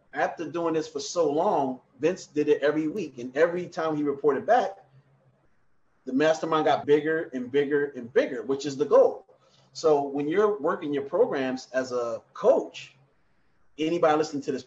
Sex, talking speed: male, 170 wpm